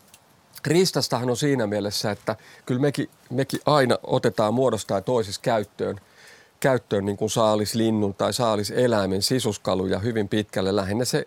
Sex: male